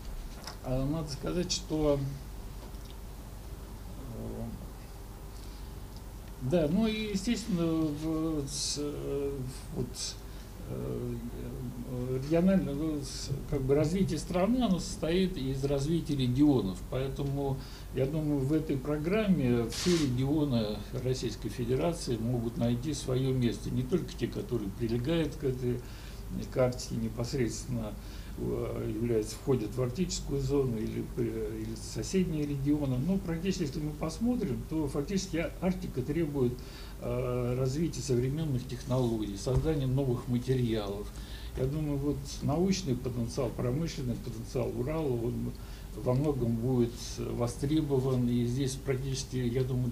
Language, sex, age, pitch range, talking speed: Russian, male, 60-79, 120-150 Hz, 105 wpm